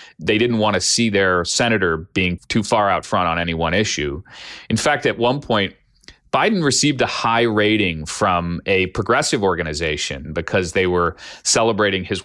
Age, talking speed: 40-59, 170 wpm